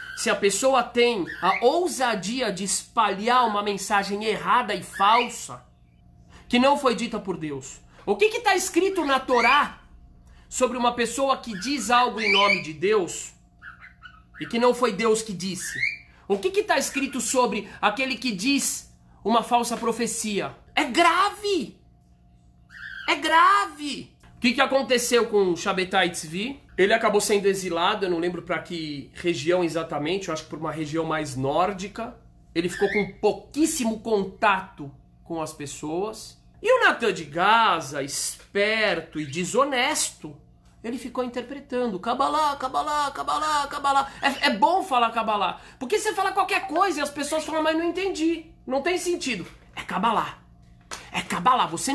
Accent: Brazilian